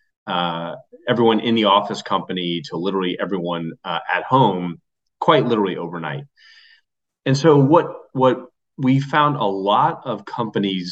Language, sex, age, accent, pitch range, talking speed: English, male, 30-49, American, 95-115 Hz, 135 wpm